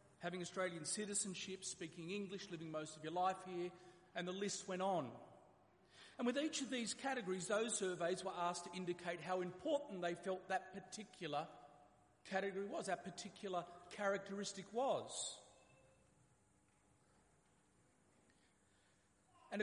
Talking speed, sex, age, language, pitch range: 125 wpm, male, 40-59, English, 175-220 Hz